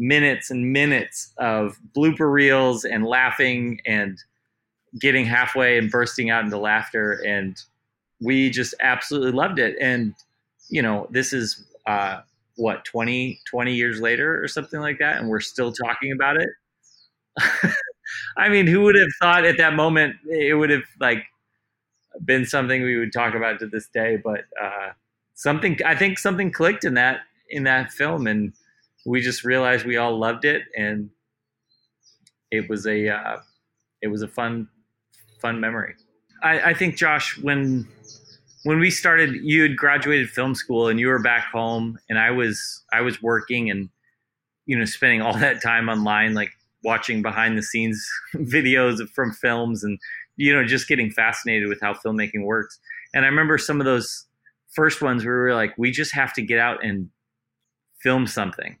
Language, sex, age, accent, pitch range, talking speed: English, male, 30-49, American, 115-140 Hz, 170 wpm